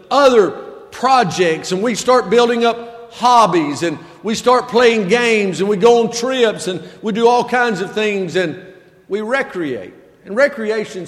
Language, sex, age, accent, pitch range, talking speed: English, male, 50-69, American, 165-215 Hz, 160 wpm